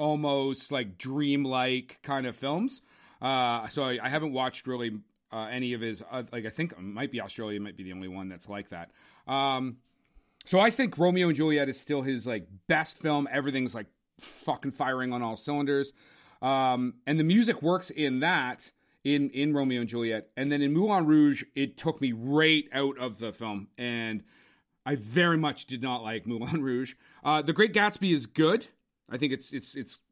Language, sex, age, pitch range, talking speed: English, male, 30-49, 125-170 Hz, 195 wpm